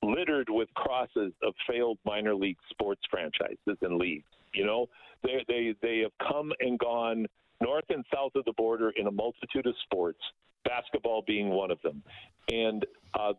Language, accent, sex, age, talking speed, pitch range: English, American, male, 50-69, 170 wpm, 110-140 Hz